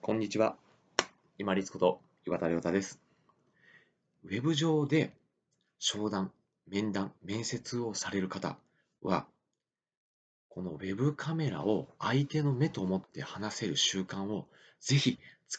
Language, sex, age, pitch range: Japanese, male, 30-49, 95-150 Hz